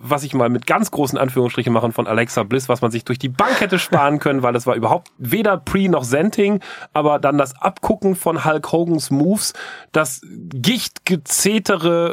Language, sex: German, male